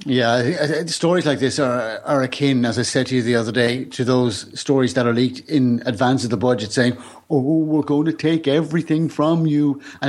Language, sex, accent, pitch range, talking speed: English, male, British, 115-150 Hz, 215 wpm